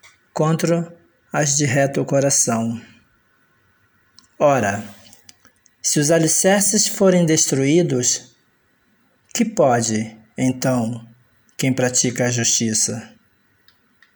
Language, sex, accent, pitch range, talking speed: Portuguese, male, Brazilian, 115-165 Hz, 75 wpm